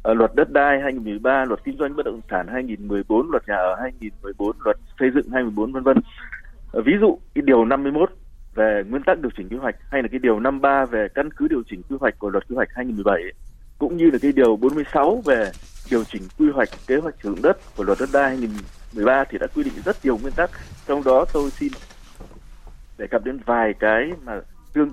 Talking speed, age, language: 215 wpm, 20-39, Vietnamese